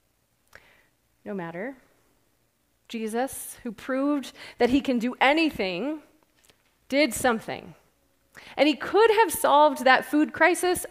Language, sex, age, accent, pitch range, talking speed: English, female, 30-49, American, 225-290 Hz, 110 wpm